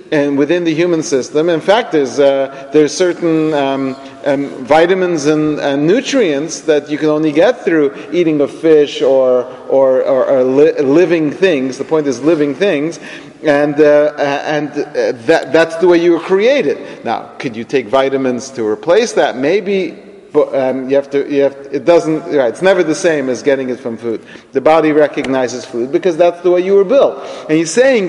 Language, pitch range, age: English, 140-180 Hz, 40-59